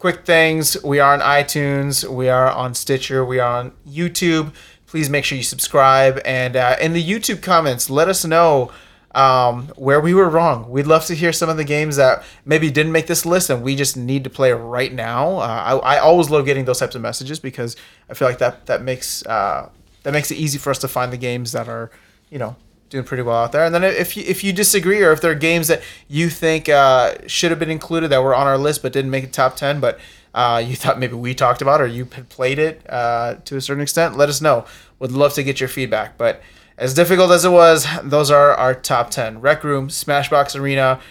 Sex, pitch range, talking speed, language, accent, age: male, 125-155 Hz, 240 wpm, English, American, 30-49